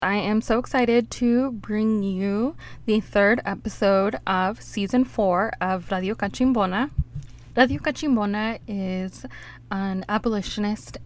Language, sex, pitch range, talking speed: English, female, 185-230 Hz, 115 wpm